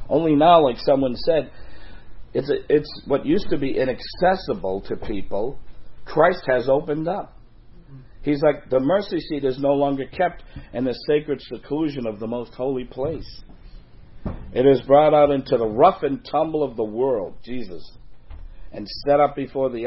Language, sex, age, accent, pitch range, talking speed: English, male, 50-69, American, 105-135 Hz, 165 wpm